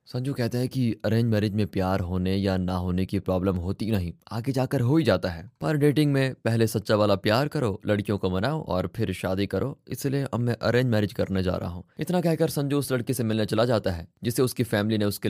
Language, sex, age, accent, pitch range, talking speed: Hindi, male, 20-39, native, 105-145 Hz, 240 wpm